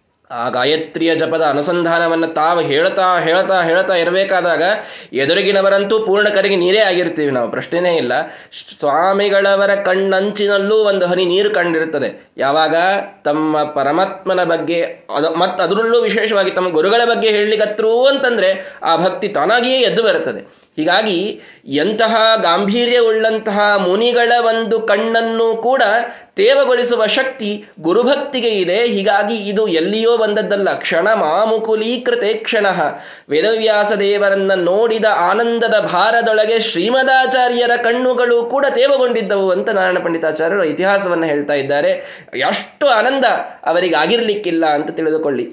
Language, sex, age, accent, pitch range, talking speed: Kannada, male, 20-39, native, 180-230 Hz, 100 wpm